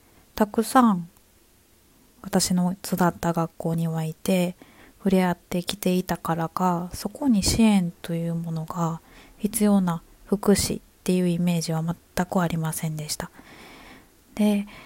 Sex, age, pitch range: female, 20-39, 175-210 Hz